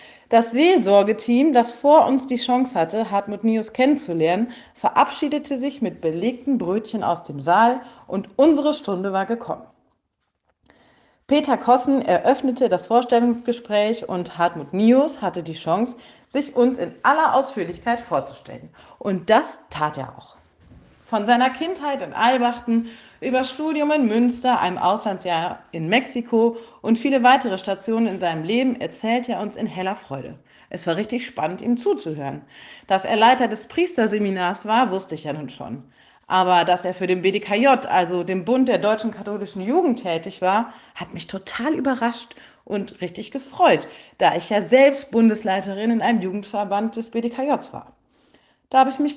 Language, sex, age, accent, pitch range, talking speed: German, female, 40-59, German, 190-255 Hz, 155 wpm